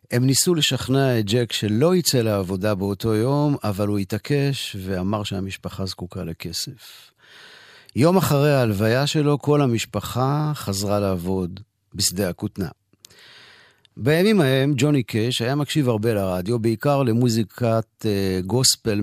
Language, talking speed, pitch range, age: Hebrew, 120 wpm, 105-135 Hz, 50-69